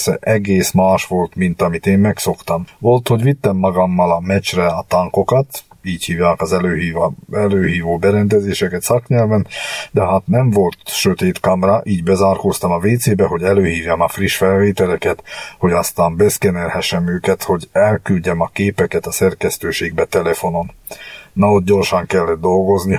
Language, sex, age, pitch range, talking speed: Hungarian, male, 50-69, 95-105 Hz, 140 wpm